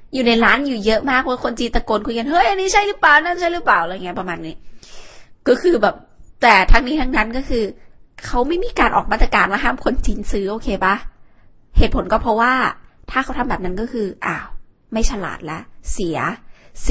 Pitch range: 195-255 Hz